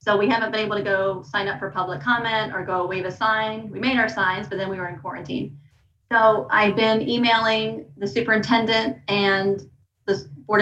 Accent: American